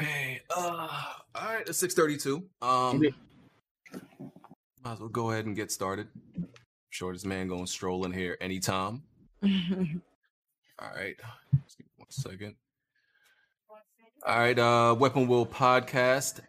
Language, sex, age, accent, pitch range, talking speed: English, male, 20-39, American, 100-125 Hz, 115 wpm